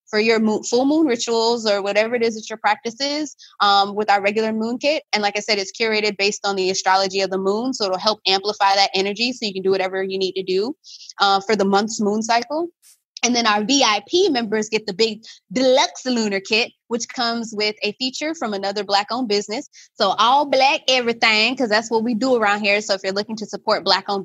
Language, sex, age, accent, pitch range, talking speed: English, female, 20-39, American, 200-235 Hz, 225 wpm